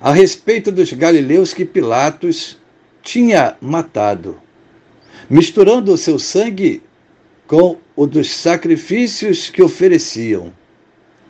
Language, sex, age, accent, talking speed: Portuguese, male, 60-79, Brazilian, 95 wpm